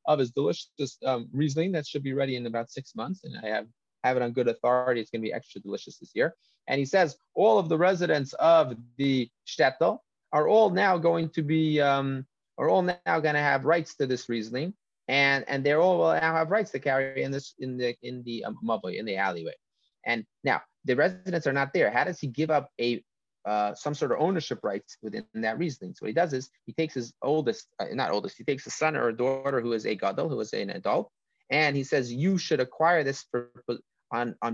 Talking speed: 230 wpm